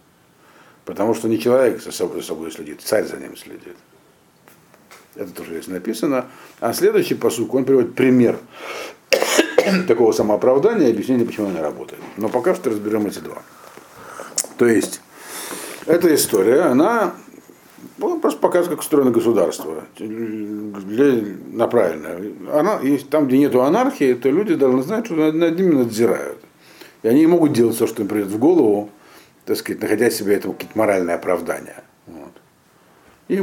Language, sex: Russian, male